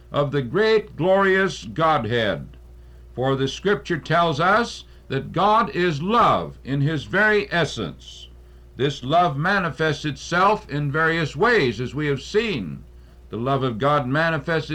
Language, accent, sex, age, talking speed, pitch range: English, American, male, 60-79, 140 wpm, 125-175 Hz